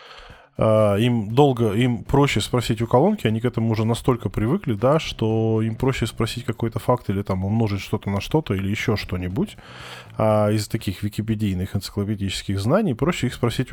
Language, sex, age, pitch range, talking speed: Russian, male, 10-29, 100-120 Hz, 165 wpm